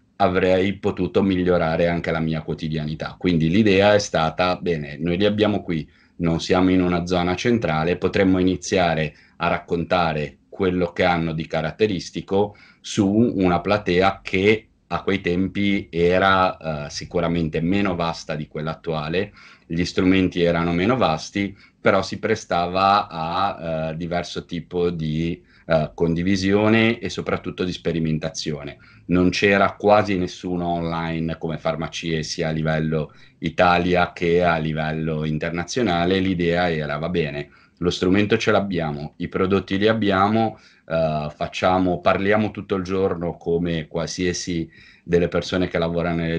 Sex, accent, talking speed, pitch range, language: male, native, 135 wpm, 80-95 Hz, Italian